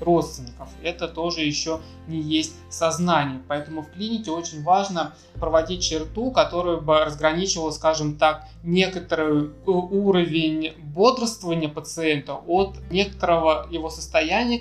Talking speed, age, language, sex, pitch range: 110 wpm, 20-39, Russian, male, 150-170 Hz